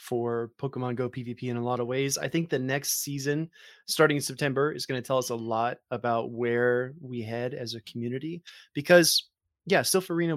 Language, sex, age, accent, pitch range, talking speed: English, male, 20-39, American, 120-155 Hz, 205 wpm